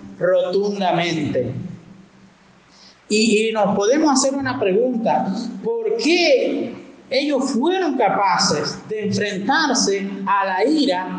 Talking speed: 95 wpm